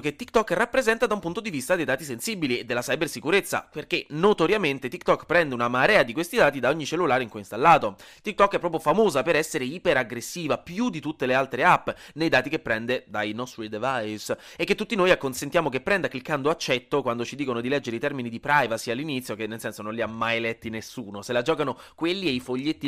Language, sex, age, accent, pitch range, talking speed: Italian, male, 20-39, native, 120-180 Hz, 225 wpm